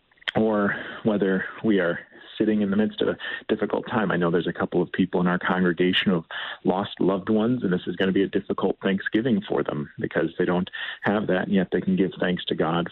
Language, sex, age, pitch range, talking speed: English, male, 40-59, 90-110 Hz, 230 wpm